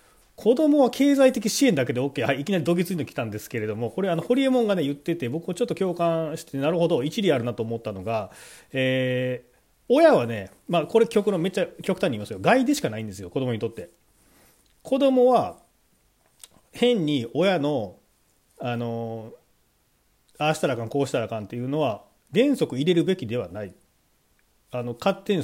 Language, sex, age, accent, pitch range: Japanese, male, 40-59, native, 120-200 Hz